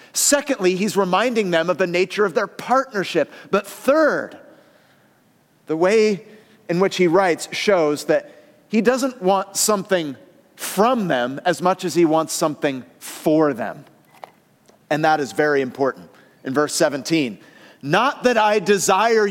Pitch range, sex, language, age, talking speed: 155-225 Hz, male, English, 30-49, 145 wpm